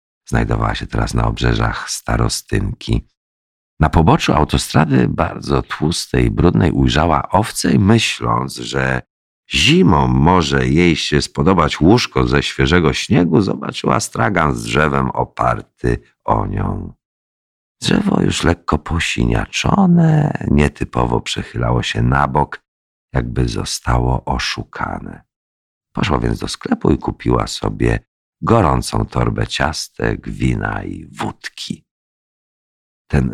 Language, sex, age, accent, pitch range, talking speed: Polish, male, 50-69, native, 65-75 Hz, 105 wpm